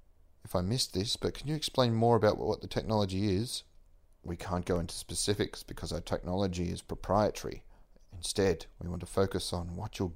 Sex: male